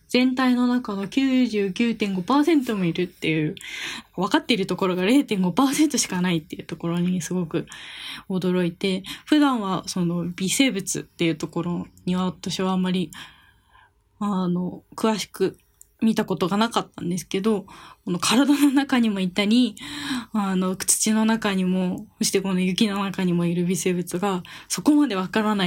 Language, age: Japanese, 10-29